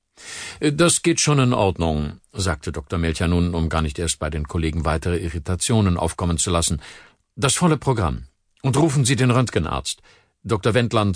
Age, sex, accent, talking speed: 50-69, male, German, 165 wpm